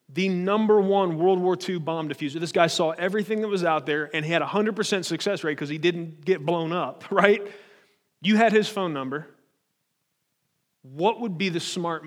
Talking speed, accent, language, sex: 200 wpm, American, English, male